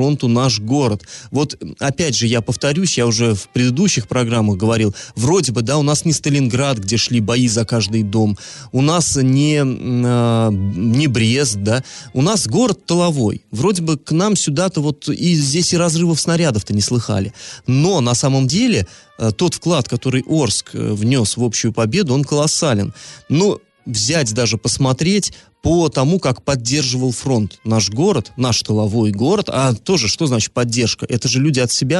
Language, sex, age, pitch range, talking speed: Russian, male, 20-39, 115-150 Hz, 165 wpm